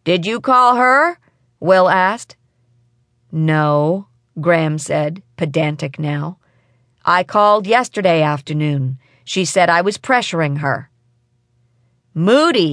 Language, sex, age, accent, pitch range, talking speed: English, female, 40-59, American, 125-190 Hz, 105 wpm